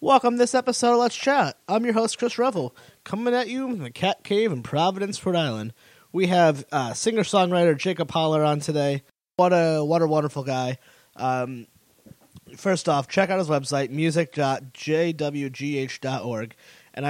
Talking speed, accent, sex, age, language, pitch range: 165 wpm, American, male, 20-39, English, 135-175 Hz